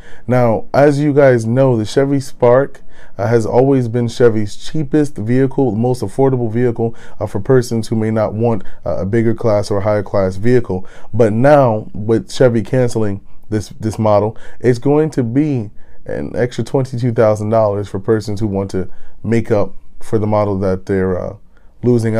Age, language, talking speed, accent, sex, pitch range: 20-39, English, 170 wpm, American, male, 100-125 Hz